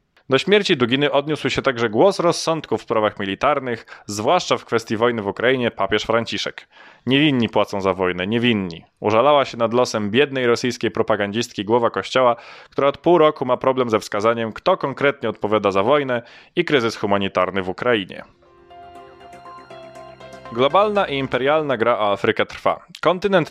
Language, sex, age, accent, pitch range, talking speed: Polish, male, 20-39, native, 115-150 Hz, 150 wpm